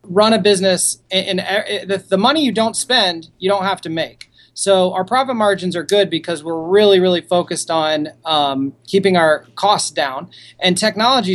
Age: 30-49